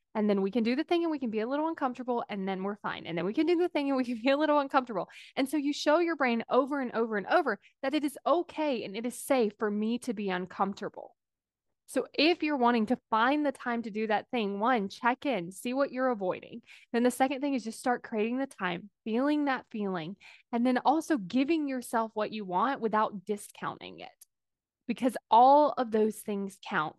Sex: female